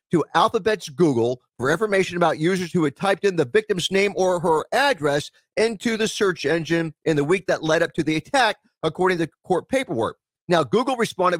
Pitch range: 150-200 Hz